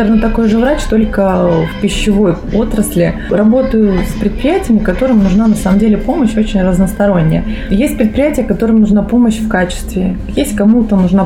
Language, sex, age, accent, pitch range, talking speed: Russian, female, 20-39, native, 185-225 Hz, 150 wpm